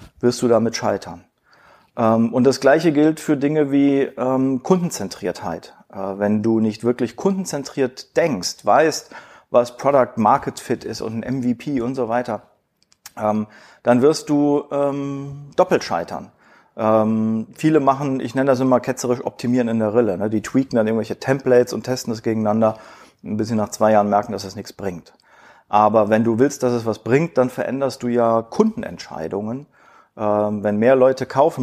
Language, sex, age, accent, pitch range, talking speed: German, male, 40-59, German, 110-140 Hz, 155 wpm